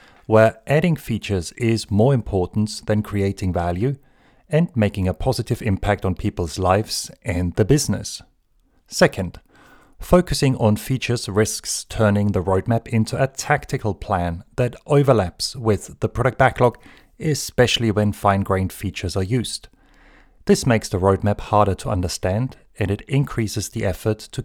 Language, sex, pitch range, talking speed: English, male, 95-120 Hz, 140 wpm